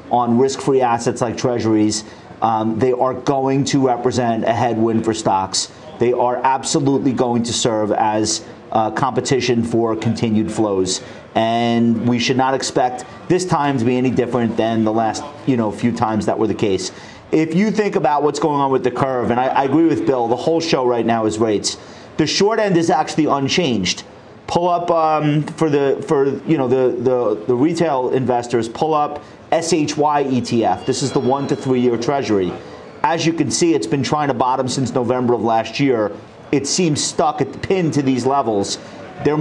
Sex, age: male, 40-59